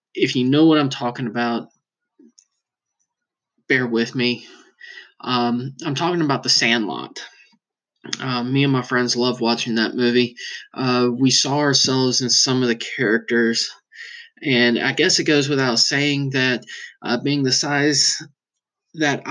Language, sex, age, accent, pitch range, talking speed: English, male, 20-39, American, 120-145 Hz, 145 wpm